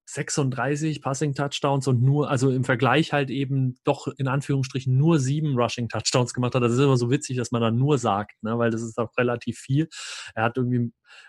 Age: 30-49